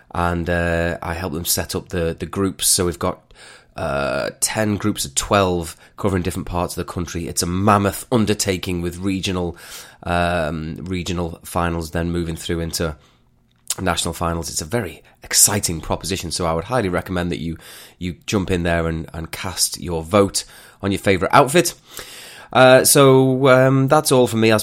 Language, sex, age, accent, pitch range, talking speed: English, male, 30-49, British, 85-120 Hz, 175 wpm